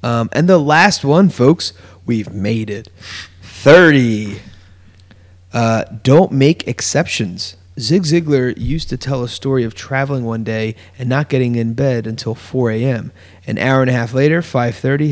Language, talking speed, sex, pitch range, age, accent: English, 160 wpm, male, 110-135 Hz, 30-49, American